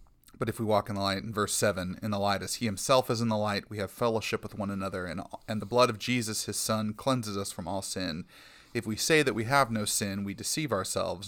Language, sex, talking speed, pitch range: English, male, 265 wpm, 95-115 Hz